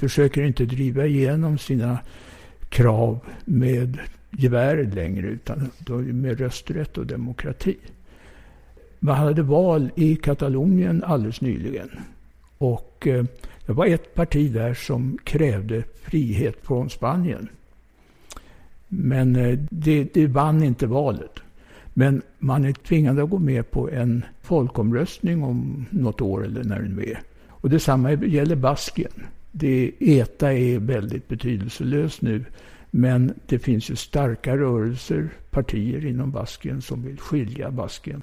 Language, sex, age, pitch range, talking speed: English, male, 60-79, 120-145 Hz, 120 wpm